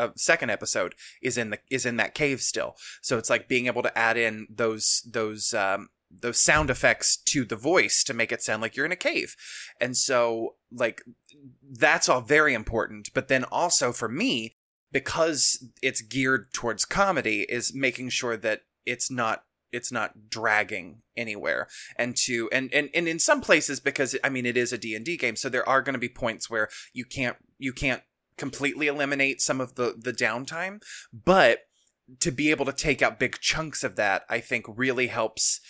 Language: English